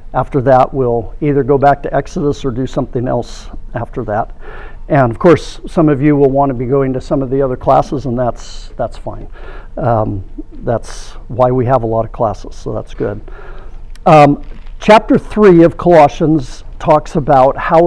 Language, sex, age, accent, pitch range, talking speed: English, male, 60-79, American, 130-165 Hz, 185 wpm